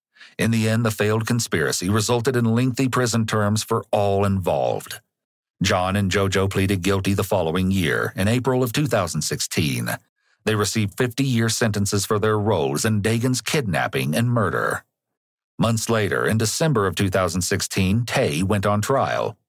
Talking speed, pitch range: 150 wpm, 100-120 Hz